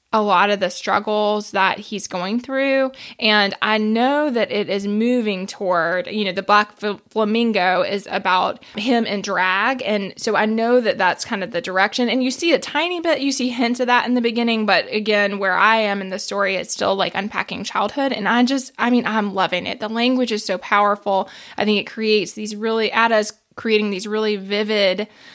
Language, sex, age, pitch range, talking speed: English, female, 20-39, 195-225 Hz, 210 wpm